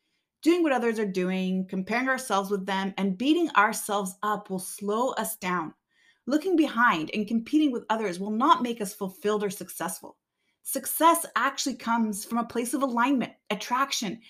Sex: female